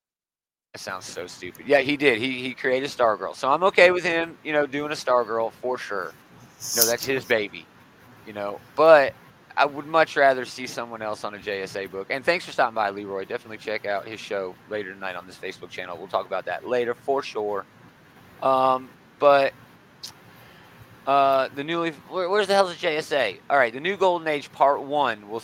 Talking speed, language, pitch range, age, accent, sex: 205 wpm, English, 115-145 Hz, 30-49, American, male